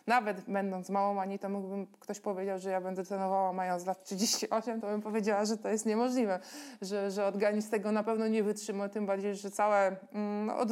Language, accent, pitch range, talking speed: Polish, native, 200-225 Hz, 195 wpm